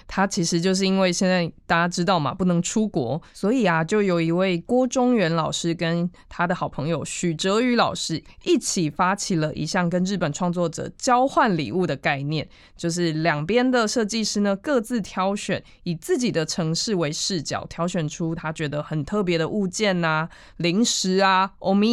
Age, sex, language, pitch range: 20-39, female, Chinese, 170-225 Hz